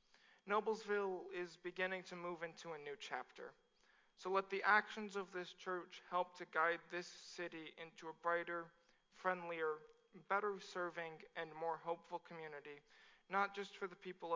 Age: 40-59